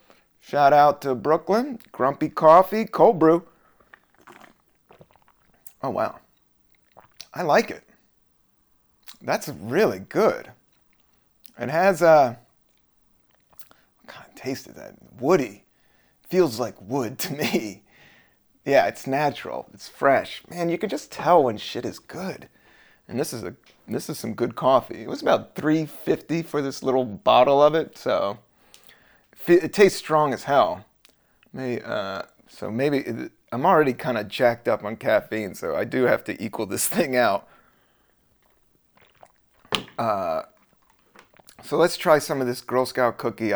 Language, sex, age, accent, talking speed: English, male, 30-49, American, 140 wpm